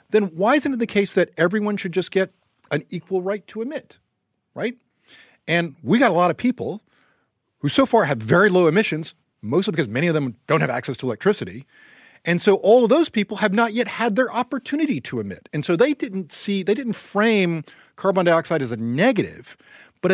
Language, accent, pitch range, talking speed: English, American, 135-200 Hz, 205 wpm